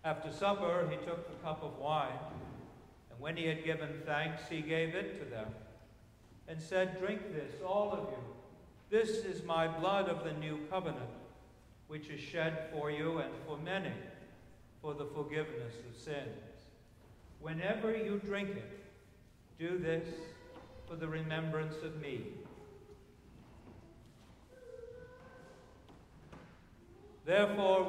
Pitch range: 150-180 Hz